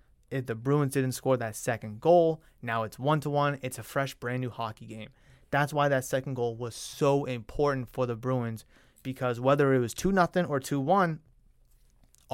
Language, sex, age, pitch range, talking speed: English, male, 20-39, 125-160 Hz, 170 wpm